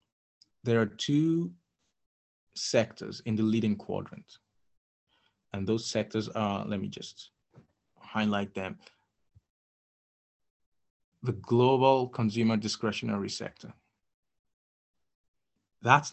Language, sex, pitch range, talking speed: English, male, 100-120 Hz, 85 wpm